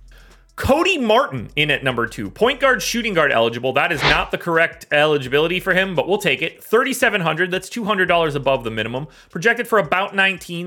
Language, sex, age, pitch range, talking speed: English, male, 30-49, 140-190 Hz, 185 wpm